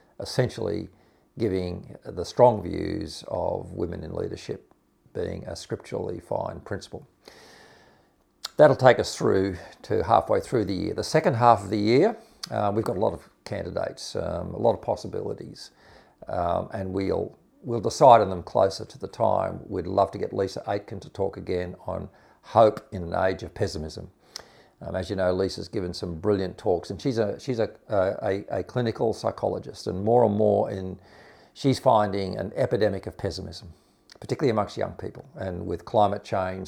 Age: 50-69